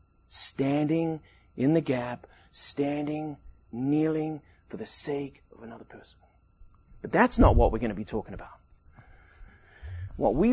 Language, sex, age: English, male, 30-49